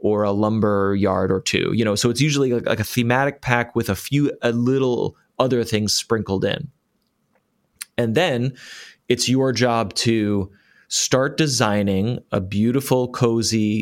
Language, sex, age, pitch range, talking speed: English, male, 30-49, 110-135 Hz, 150 wpm